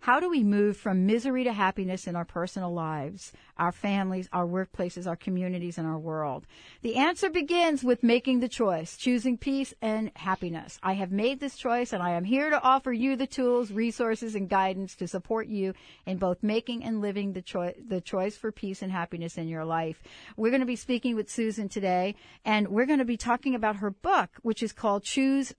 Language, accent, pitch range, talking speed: English, American, 185-245 Hz, 205 wpm